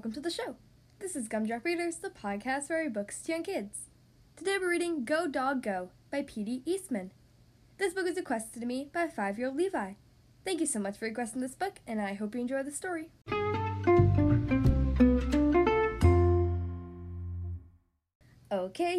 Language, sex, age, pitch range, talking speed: English, female, 10-29, 205-340 Hz, 160 wpm